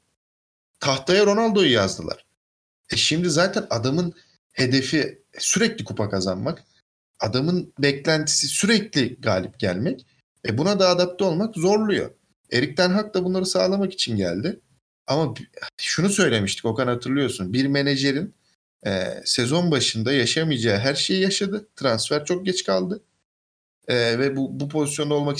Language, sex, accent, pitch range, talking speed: Turkish, male, native, 125-180 Hz, 130 wpm